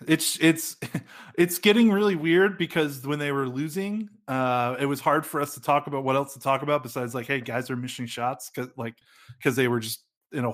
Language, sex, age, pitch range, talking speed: English, male, 20-39, 125-155 Hz, 230 wpm